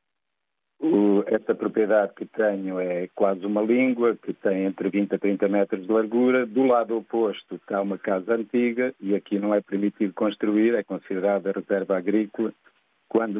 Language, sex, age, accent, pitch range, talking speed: Portuguese, male, 50-69, Portuguese, 100-110 Hz, 155 wpm